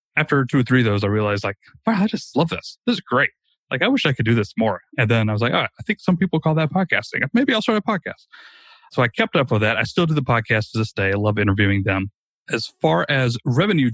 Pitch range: 110-145 Hz